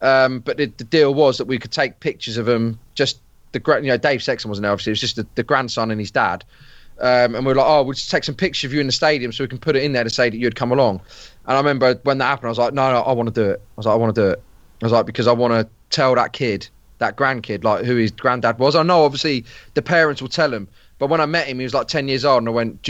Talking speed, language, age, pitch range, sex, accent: 330 wpm, English, 20-39, 115-145 Hz, male, British